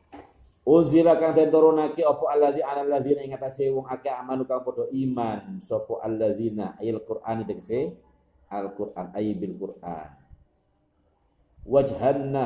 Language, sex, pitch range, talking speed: Indonesian, male, 100-135 Hz, 130 wpm